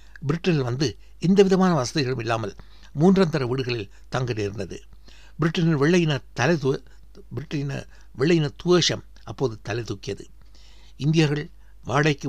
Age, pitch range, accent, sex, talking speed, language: 60-79, 110-150 Hz, native, male, 110 wpm, Tamil